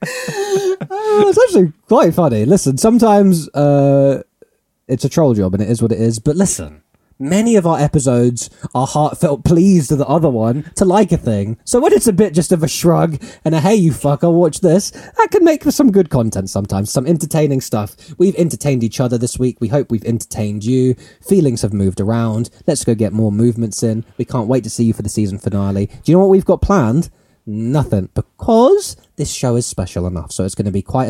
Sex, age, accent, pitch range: male, 20-39, British, 105-150 Hz